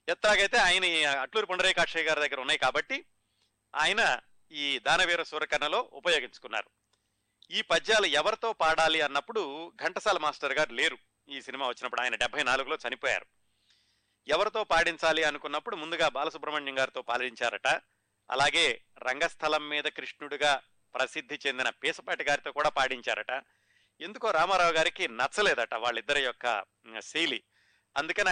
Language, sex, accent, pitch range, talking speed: Telugu, male, native, 130-170 Hz, 115 wpm